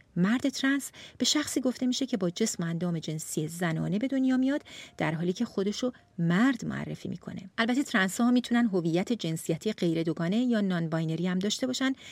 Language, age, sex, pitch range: Persian, 40-59, female, 175-250 Hz